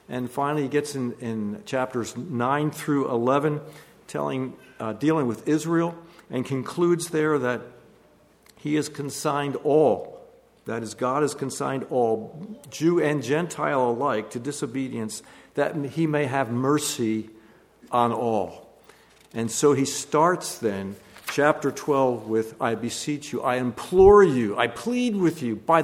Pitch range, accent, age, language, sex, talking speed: 120-165 Hz, American, 50-69, English, male, 140 wpm